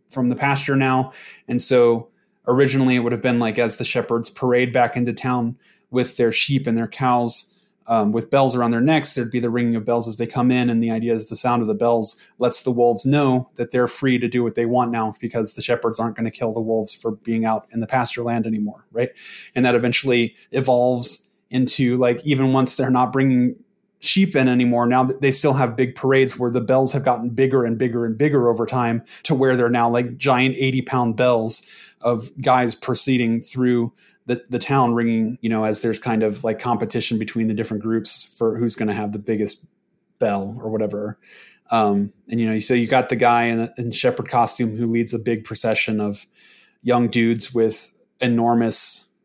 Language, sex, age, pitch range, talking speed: English, male, 20-39, 115-130 Hz, 215 wpm